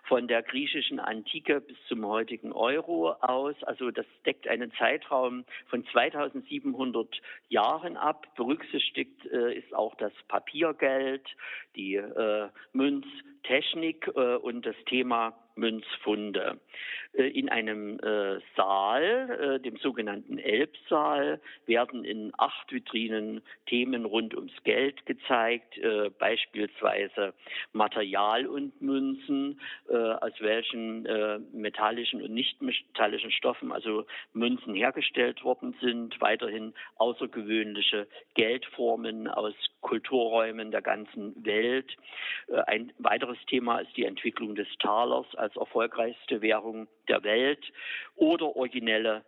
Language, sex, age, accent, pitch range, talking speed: German, male, 50-69, German, 110-130 Hz, 105 wpm